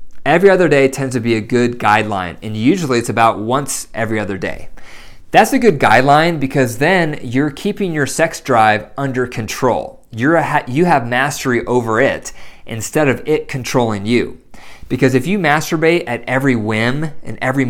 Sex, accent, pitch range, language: male, American, 115-145 Hz, English